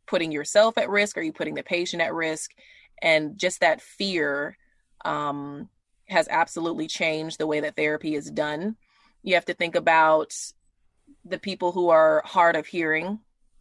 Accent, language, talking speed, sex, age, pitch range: American, English, 170 wpm, female, 20-39, 155-195 Hz